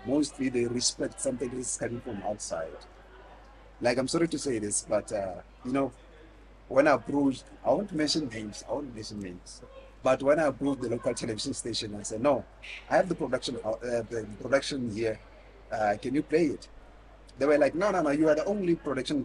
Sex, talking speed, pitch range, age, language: male, 205 wpm, 115-150 Hz, 50-69, English